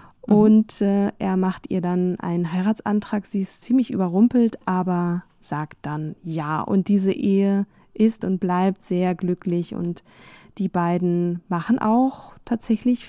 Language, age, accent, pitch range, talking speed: German, 20-39, German, 180-220 Hz, 140 wpm